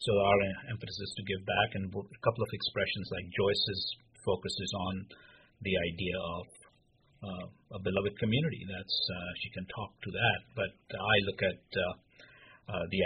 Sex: male